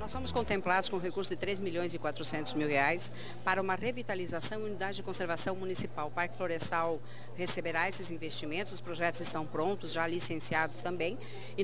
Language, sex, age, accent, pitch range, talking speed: Portuguese, female, 50-69, Brazilian, 170-200 Hz, 180 wpm